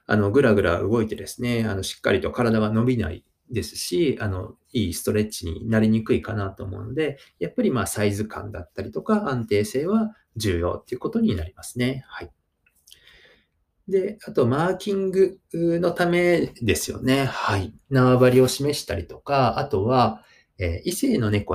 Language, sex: Japanese, male